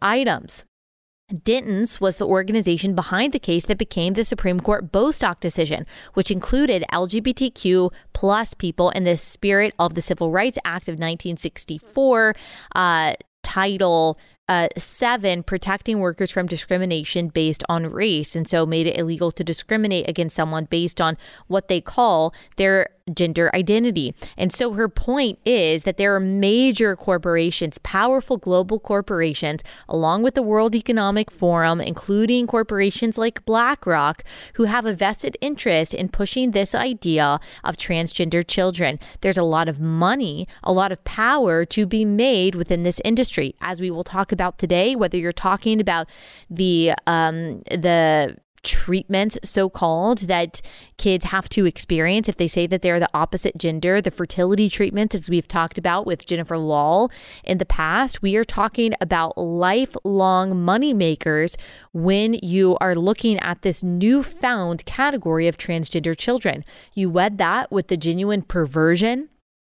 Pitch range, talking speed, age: 170-215 Hz, 150 wpm, 20-39